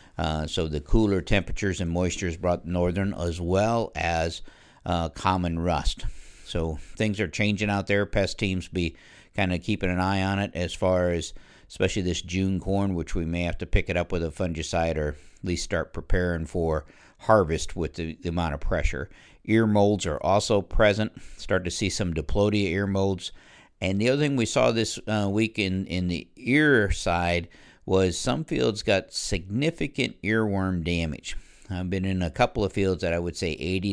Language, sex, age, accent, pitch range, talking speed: English, male, 60-79, American, 85-100 Hz, 190 wpm